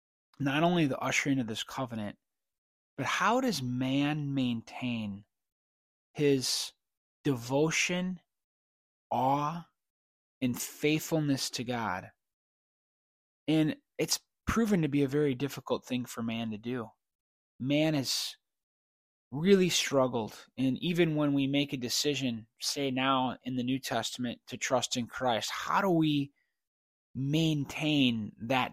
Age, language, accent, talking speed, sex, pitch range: 20-39, English, American, 120 wpm, male, 120-150 Hz